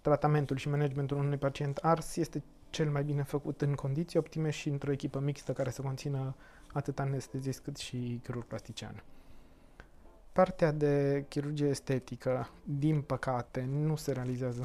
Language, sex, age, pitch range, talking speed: Romanian, male, 20-39, 130-150 Hz, 150 wpm